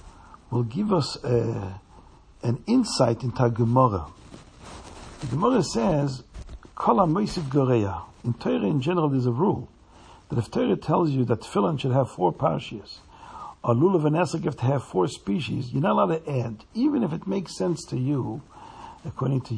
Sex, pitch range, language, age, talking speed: male, 125-175 Hz, English, 60-79, 160 wpm